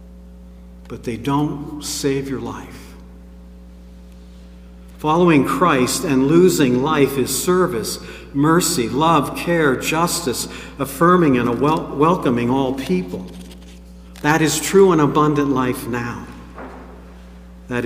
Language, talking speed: English, 100 wpm